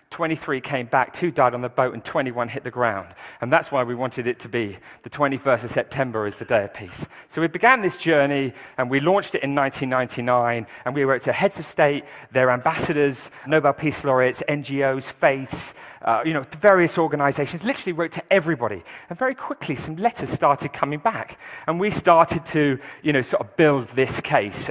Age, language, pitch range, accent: 40-59, English, 120-155 Hz, British